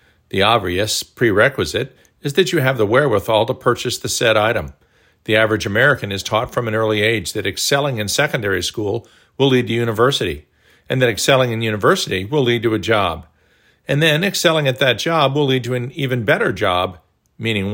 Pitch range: 105-145 Hz